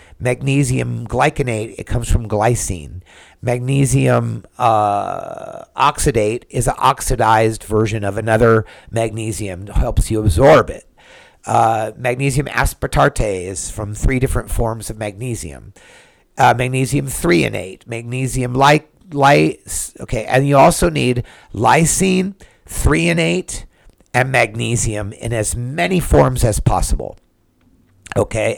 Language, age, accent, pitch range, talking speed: English, 50-69, American, 100-135 Hz, 110 wpm